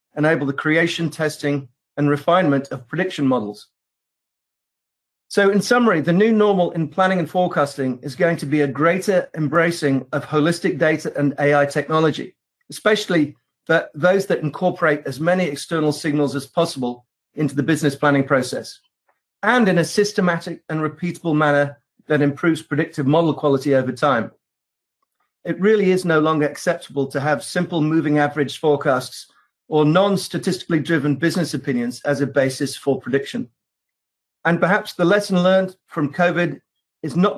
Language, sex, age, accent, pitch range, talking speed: English, male, 40-59, British, 145-175 Hz, 150 wpm